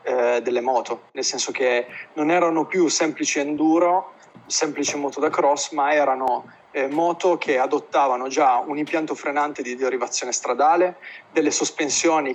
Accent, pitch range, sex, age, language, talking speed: native, 125-160 Hz, male, 30-49, Italian, 140 wpm